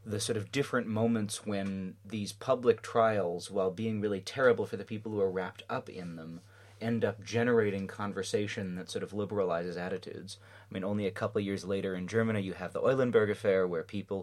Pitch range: 90-105 Hz